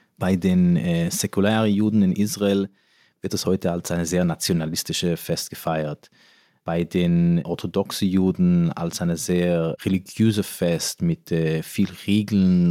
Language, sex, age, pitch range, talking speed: German, male, 30-49, 90-125 Hz, 135 wpm